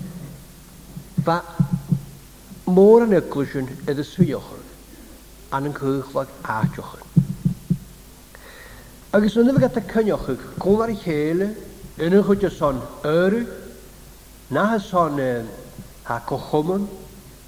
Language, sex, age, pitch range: English, male, 60-79, 145-195 Hz